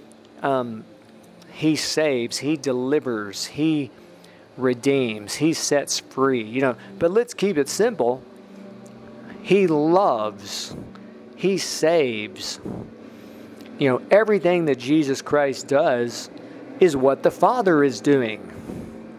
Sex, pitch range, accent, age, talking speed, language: male, 120-155 Hz, American, 40-59, 105 wpm, English